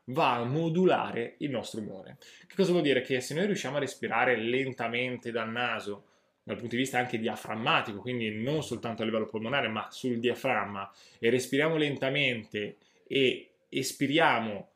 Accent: native